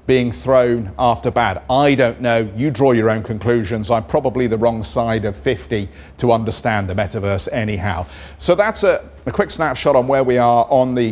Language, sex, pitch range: English, male, 105-135 Hz